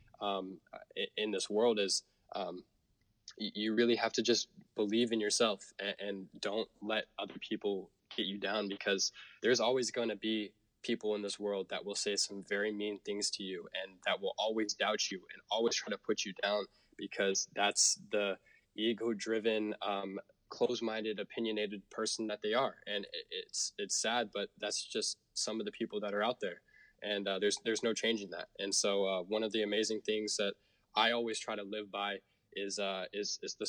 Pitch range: 100-115 Hz